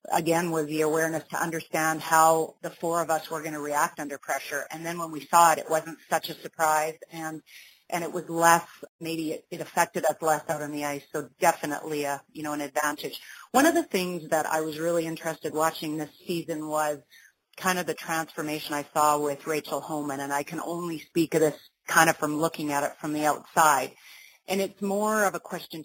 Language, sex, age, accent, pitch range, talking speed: English, female, 30-49, American, 155-175 Hz, 220 wpm